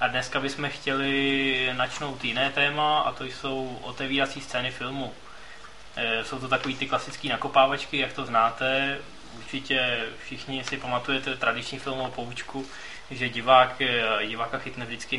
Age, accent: 20-39, native